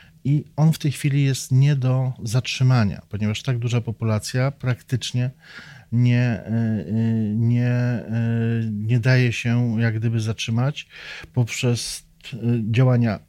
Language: Polish